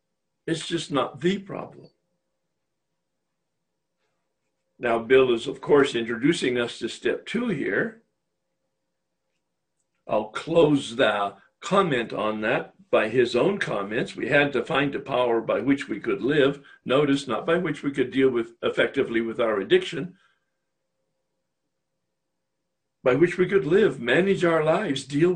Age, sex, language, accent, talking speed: 60-79, male, English, American, 135 wpm